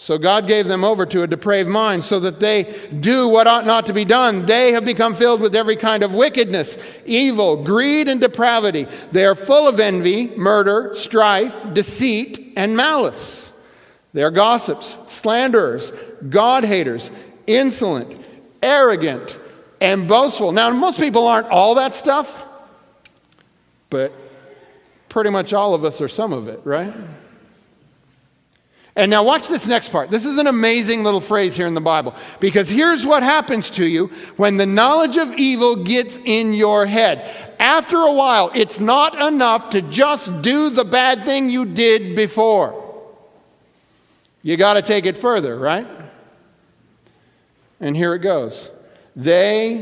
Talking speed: 155 wpm